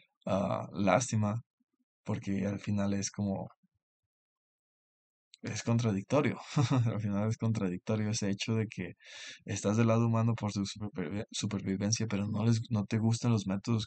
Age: 20-39